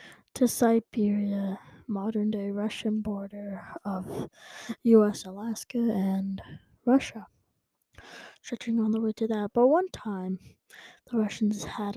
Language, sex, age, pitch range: English, female, 20-39, 195-235 Hz